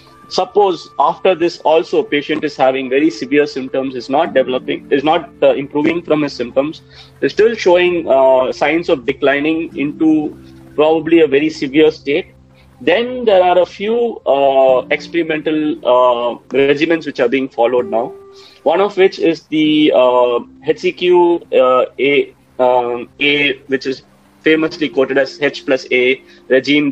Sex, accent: male, Indian